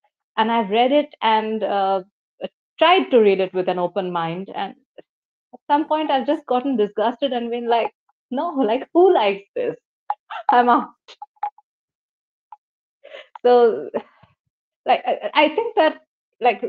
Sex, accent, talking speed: female, Indian, 140 wpm